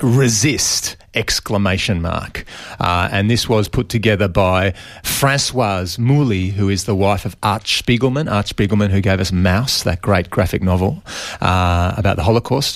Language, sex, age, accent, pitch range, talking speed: English, male, 30-49, Australian, 95-115 Hz, 155 wpm